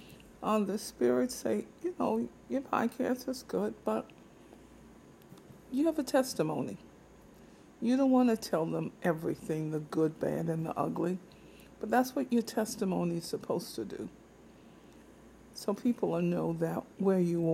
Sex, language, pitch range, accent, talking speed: female, English, 165-225 Hz, American, 155 wpm